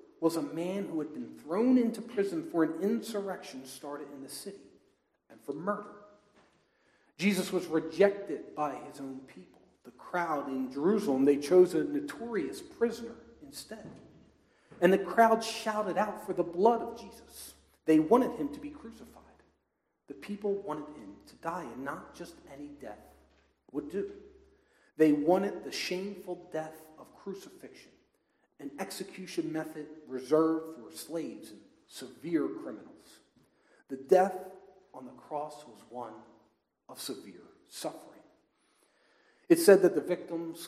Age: 40-59